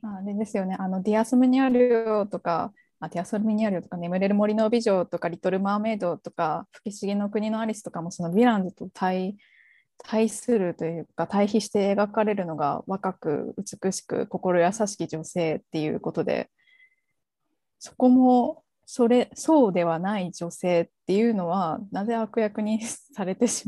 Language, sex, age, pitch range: Japanese, female, 20-39, 175-230 Hz